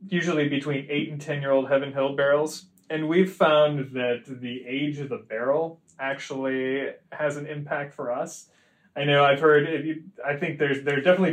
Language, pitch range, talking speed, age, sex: English, 125-150 Hz, 185 wpm, 30-49, male